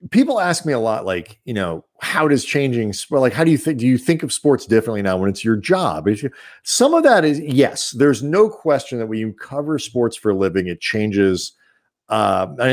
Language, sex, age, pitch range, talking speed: English, male, 40-59, 110-160 Hz, 240 wpm